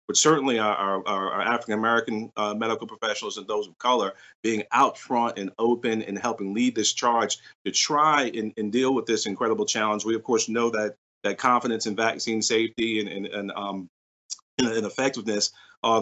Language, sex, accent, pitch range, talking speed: English, male, American, 105-120 Hz, 185 wpm